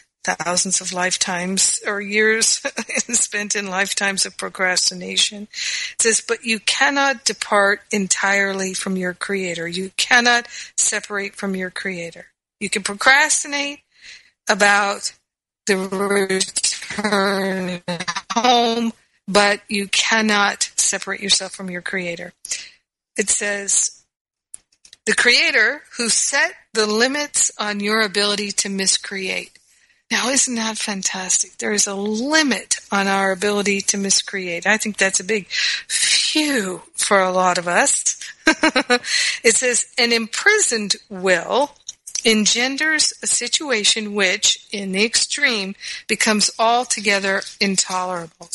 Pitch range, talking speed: 195-235 Hz, 115 wpm